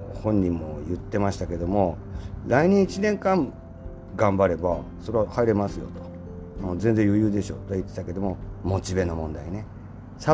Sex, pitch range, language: male, 85-110 Hz, Japanese